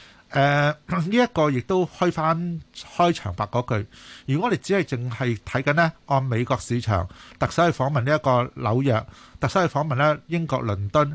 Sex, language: male, Chinese